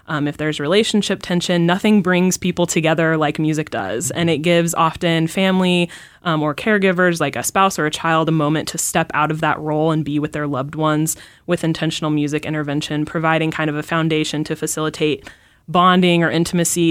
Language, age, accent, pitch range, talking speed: English, 20-39, American, 150-185 Hz, 190 wpm